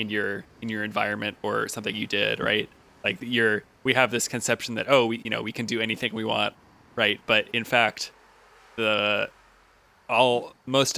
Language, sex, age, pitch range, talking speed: English, male, 20-39, 110-125 Hz, 185 wpm